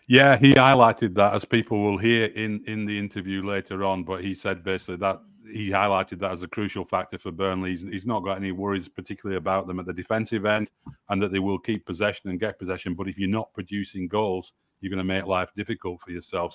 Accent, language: British, English